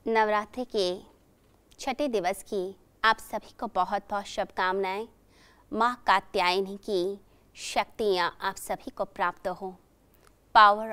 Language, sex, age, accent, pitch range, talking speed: Hindi, female, 30-49, native, 190-230 Hz, 115 wpm